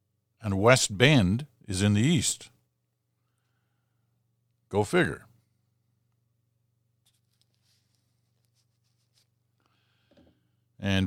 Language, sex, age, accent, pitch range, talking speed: English, male, 50-69, American, 105-120 Hz, 55 wpm